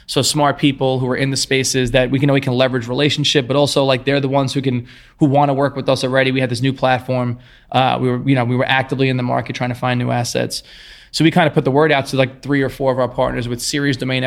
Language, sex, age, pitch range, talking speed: English, male, 20-39, 130-140 Hz, 300 wpm